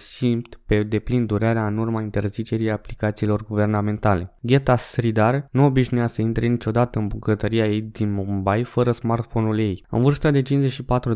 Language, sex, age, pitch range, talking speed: Romanian, male, 20-39, 105-125 Hz, 150 wpm